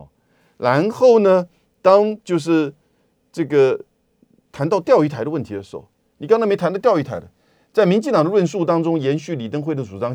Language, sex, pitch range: Chinese, male, 120-175 Hz